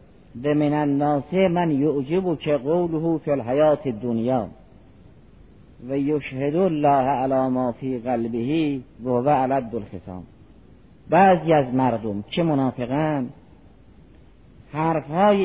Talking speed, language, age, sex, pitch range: 95 wpm, Persian, 50-69, male, 125-160 Hz